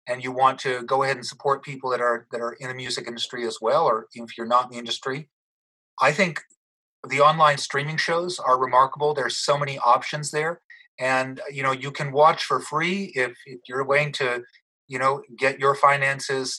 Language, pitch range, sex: English, 125-145 Hz, male